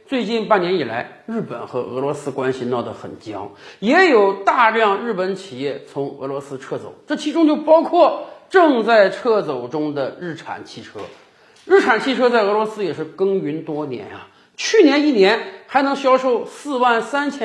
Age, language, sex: 50-69, Chinese, male